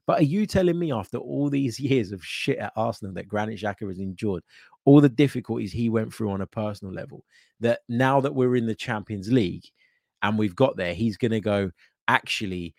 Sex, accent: male, British